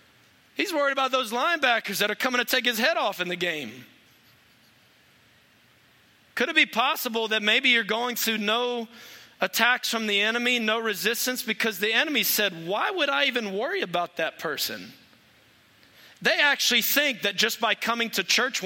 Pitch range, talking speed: 195-245 Hz, 170 wpm